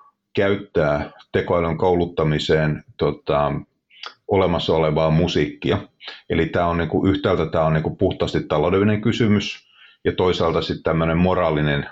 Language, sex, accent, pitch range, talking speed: Finnish, male, native, 80-90 Hz, 110 wpm